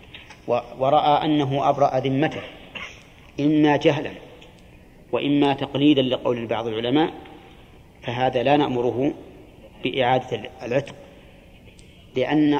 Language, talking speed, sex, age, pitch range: Arabic, 80 wpm, male, 40-59, 135-160 Hz